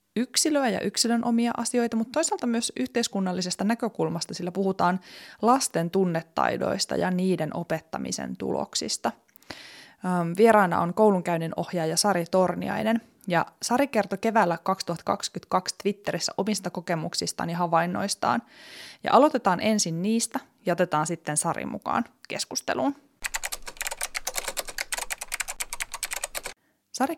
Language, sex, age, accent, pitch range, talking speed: Finnish, female, 20-39, native, 175-235 Hz, 100 wpm